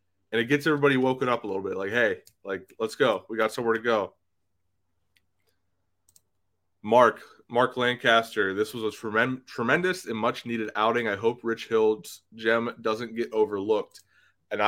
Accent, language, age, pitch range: American, English, 20-39, 95-115 Hz